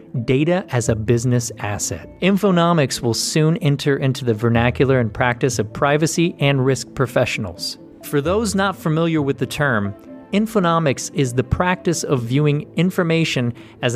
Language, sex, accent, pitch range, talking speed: English, male, American, 120-155 Hz, 145 wpm